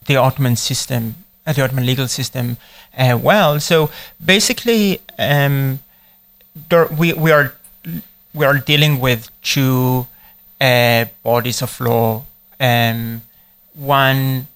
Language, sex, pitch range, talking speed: English, male, 120-155 Hz, 115 wpm